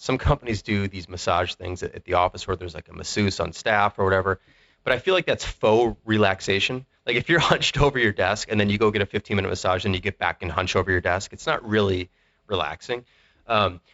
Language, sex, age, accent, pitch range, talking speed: English, male, 30-49, American, 90-110 Hz, 230 wpm